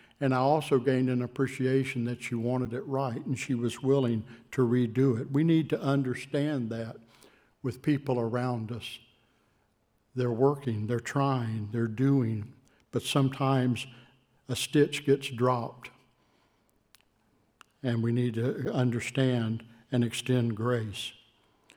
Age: 60-79